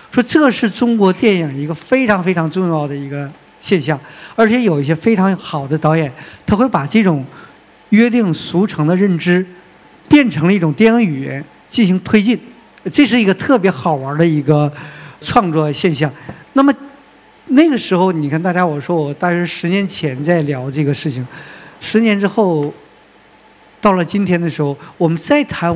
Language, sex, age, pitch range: Chinese, male, 50-69, 150-200 Hz